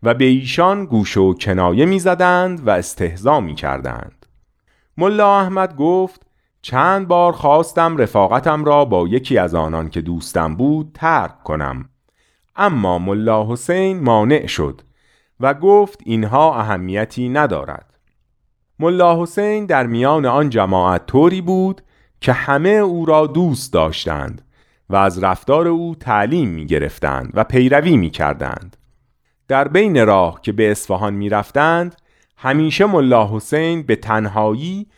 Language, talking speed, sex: Persian, 125 wpm, male